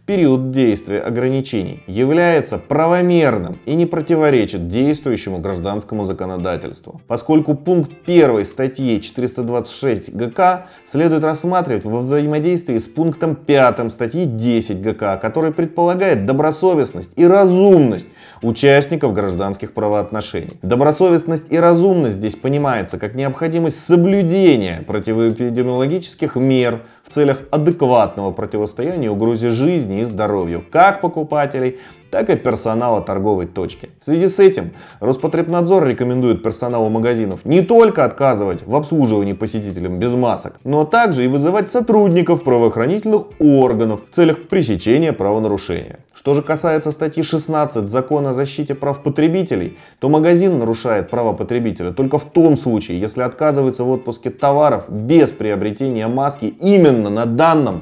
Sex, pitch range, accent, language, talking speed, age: male, 110-160 Hz, native, Russian, 120 wpm, 30-49